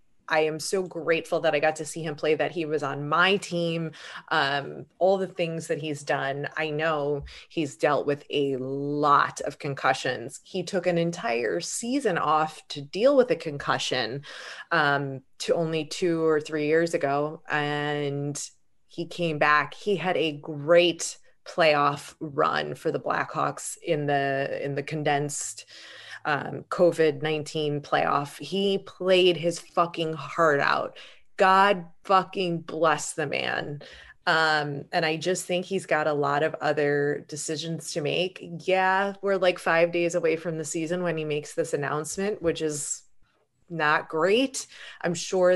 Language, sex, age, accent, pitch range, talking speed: English, female, 20-39, American, 145-180 Hz, 155 wpm